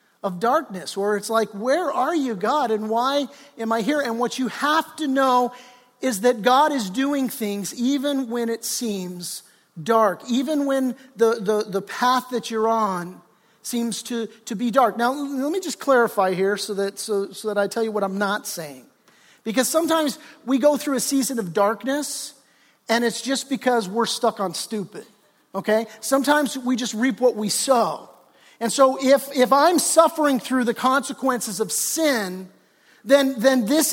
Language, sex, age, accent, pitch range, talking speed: English, male, 50-69, American, 210-260 Hz, 180 wpm